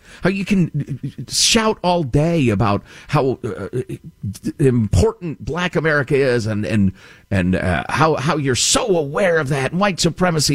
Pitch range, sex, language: 95-160 Hz, male, English